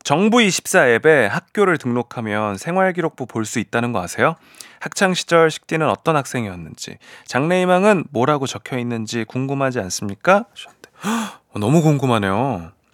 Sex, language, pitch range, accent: male, Korean, 110-170 Hz, native